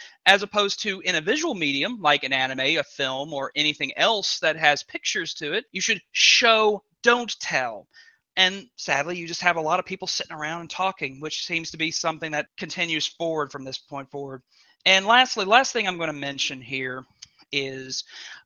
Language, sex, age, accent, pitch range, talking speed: English, male, 40-59, American, 145-195 Hz, 195 wpm